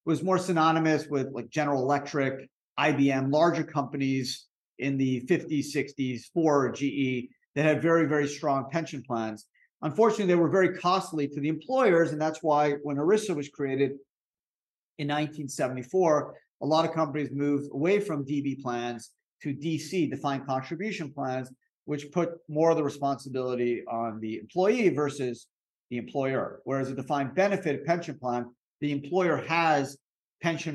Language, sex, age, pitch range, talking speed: English, male, 50-69, 130-155 Hz, 150 wpm